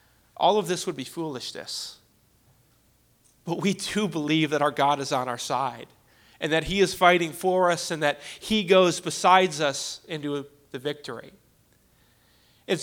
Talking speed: 160 wpm